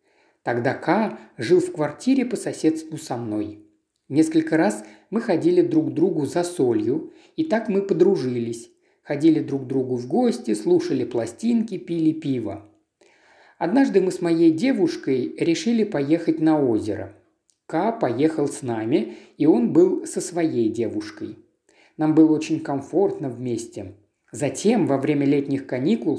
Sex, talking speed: male, 140 wpm